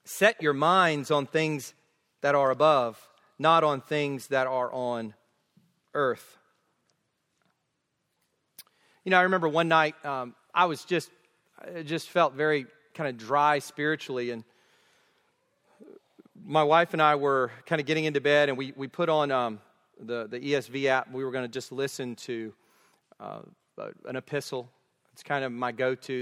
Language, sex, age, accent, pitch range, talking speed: English, male, 40-59, American, 130-200 Hz, 160 wpm